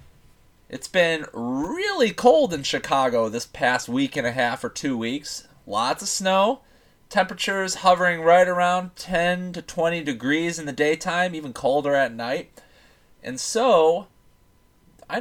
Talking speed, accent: 140 wpm, American